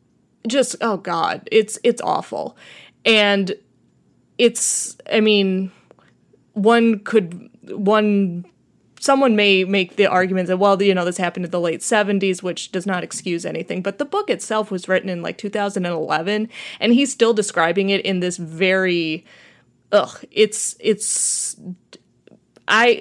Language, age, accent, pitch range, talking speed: English, 20-39, American, 185-230 Hz, 140 wpm